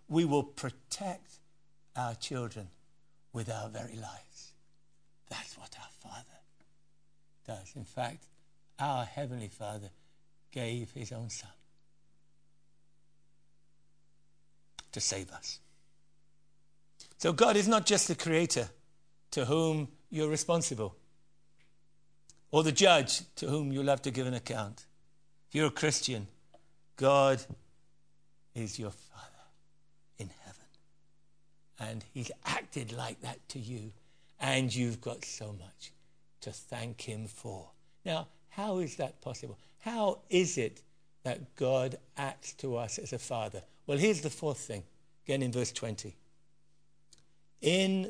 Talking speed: 120 wpm